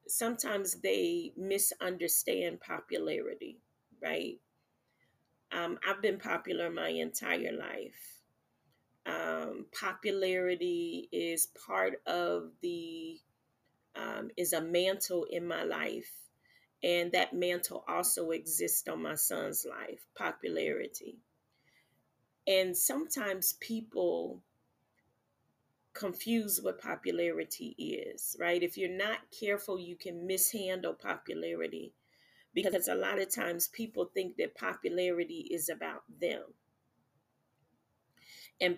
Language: English